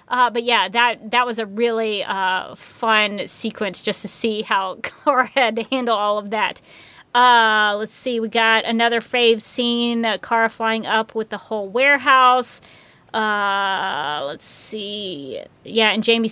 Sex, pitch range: female, 215-255 Hz